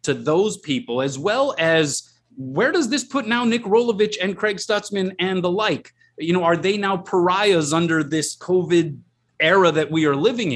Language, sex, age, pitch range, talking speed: English, male, 30-49, 135-195 Hz, 190 wpm